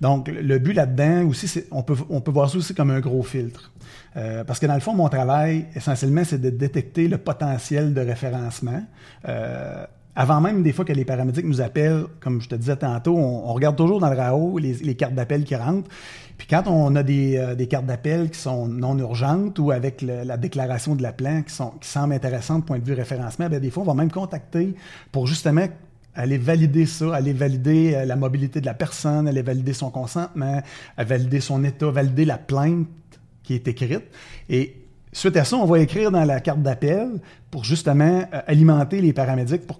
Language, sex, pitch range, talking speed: French, male, 130-160 Hz, 215 wpm